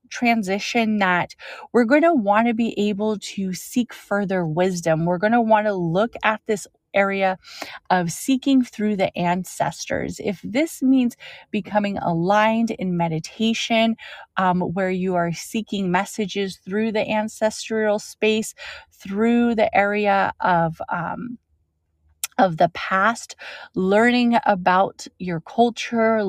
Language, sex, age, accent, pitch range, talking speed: English, female, 30-49, American, 180-225 Hz, 130 wpm